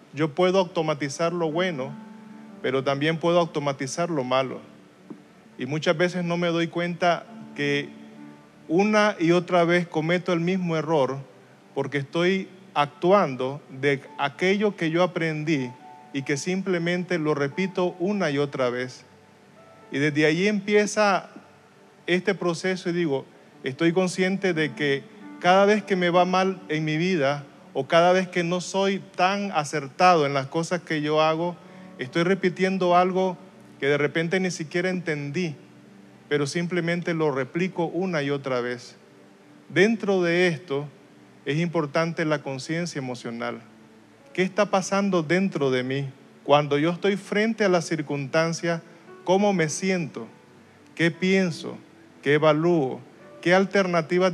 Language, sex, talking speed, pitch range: Spanish, male, 140 wpm, 145-185 Hz